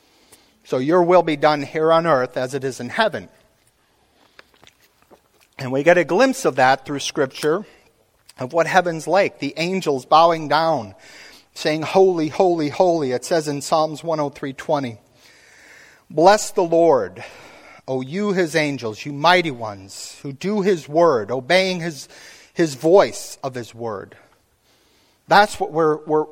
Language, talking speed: English, 145 wpm